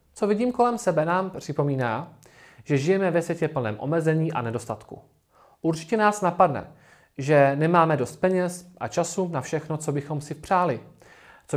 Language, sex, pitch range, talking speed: Czech, male, 135-195 Hz, 155 wpm